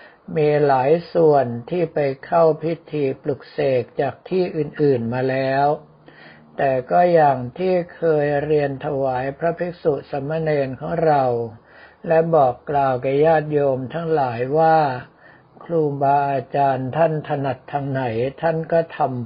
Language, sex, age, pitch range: Thai, male, 60-79, 135-160 Hz